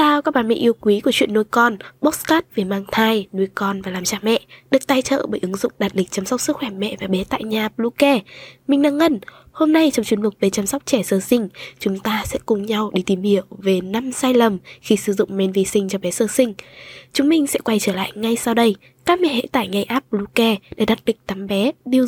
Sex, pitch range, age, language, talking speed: female, 200-260 Hz, 10-29, Vietnamese, 260 wpm